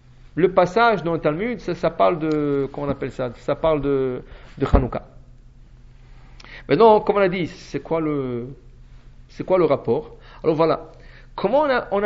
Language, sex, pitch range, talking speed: English, male, 135-215 Hz, 180 wpm